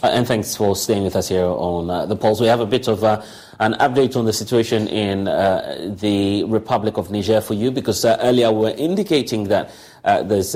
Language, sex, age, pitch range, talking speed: English, male, 30-49, 95-110 Hz, 225 wpm